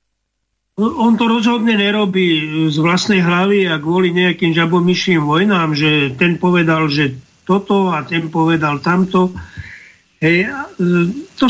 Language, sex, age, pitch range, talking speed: Slovak, male, 50-69, 155-185 Hz, 120 wpm